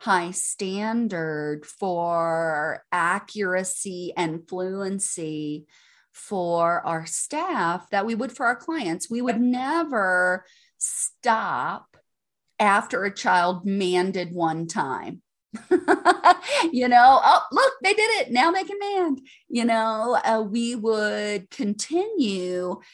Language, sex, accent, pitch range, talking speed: English, female, American, 175-235 Hz, 110 wpm